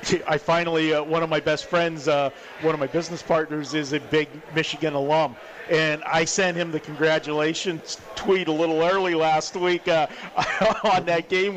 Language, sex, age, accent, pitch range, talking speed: English, male, 50-69, American, 155-175 Hz, 180 wpm